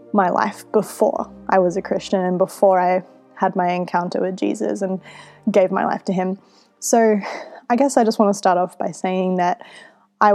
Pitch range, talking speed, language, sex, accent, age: 185-220 Hz, 195 wpm, English, female, Australian, 20-39